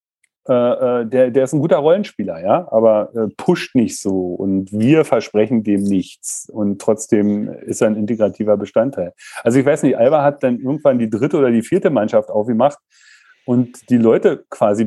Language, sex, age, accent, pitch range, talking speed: German, male, 40-59, German, 105-130 Hz, 180 wpm